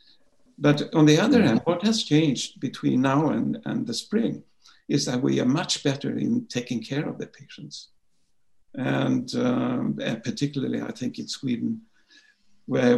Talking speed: 160 wpm